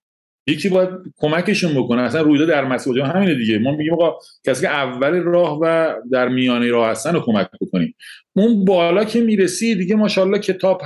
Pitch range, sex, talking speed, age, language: 130-175 Hz, male, 175 wpm, 40-59, Persian